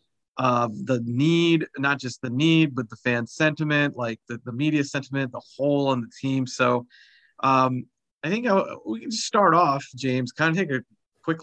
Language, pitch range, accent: English, 120-145 Hz, American